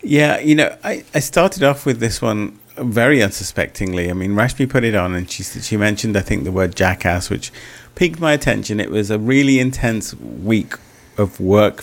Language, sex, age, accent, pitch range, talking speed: English, male, 30-49, British, 95-125 Hz, 200 wpm